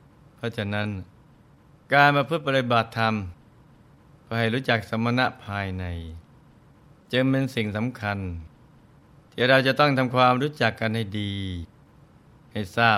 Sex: male